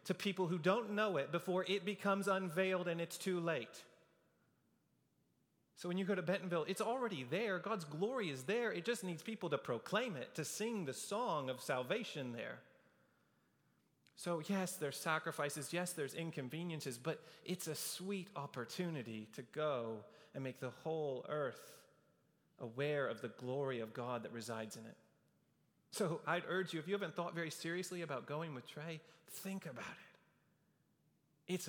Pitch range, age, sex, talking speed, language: 120-180 Hz, 30-49, male, 165 wpm, English